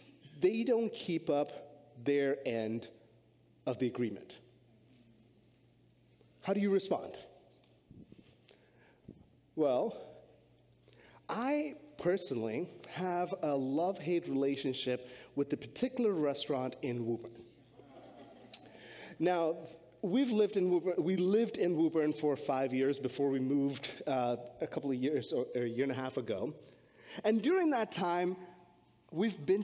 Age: 30-49